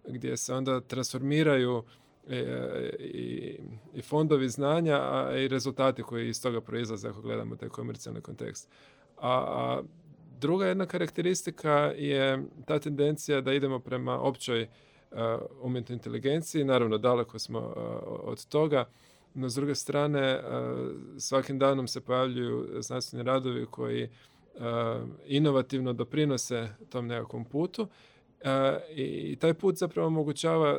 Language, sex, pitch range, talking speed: Croatian, male, 125-145 Hz, 115 wpm